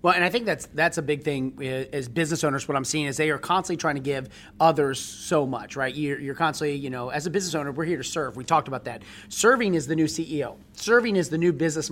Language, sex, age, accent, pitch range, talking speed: English, male, 30-49, American, 135-170 Hz, 265 wpm